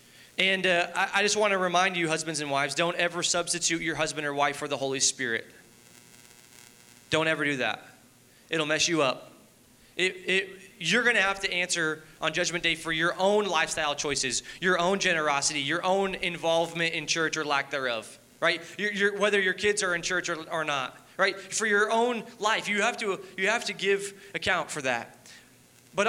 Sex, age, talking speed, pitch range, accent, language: male, 20-39, 185 wpm, 155-190 Hz, American, English